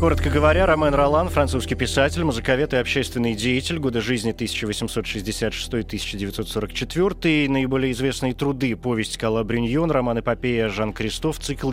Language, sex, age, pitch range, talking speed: Russian, male, 20-39, 110-140 Hz, 130 wpm